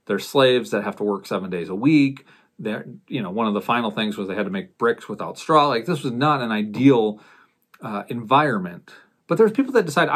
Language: English